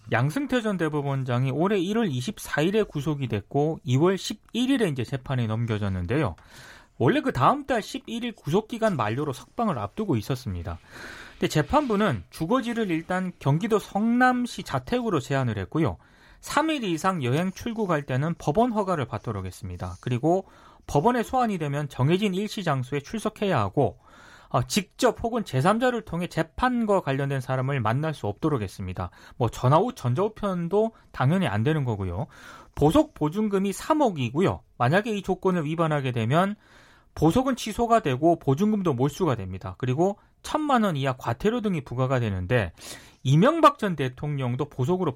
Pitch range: 125-210 Hz